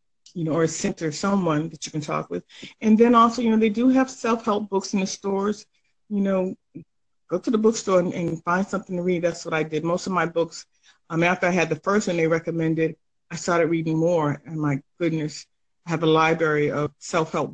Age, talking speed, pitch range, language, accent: 40-59, 225 wpm, 160-190 Hz, English, American